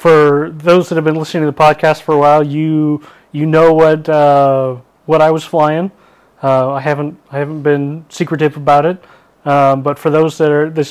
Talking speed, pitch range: 205 wpm, 135-155 Hz